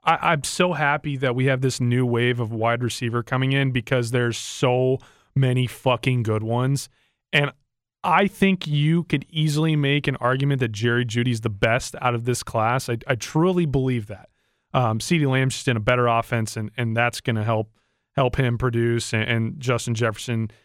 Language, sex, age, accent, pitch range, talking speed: English, male, 30-49, American, 120-155 Hz, 190 wpm